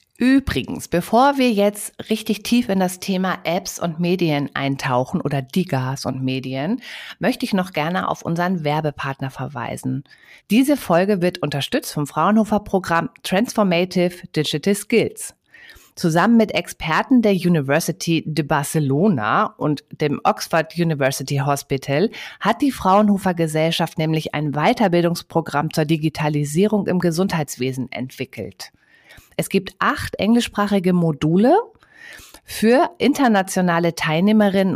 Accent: German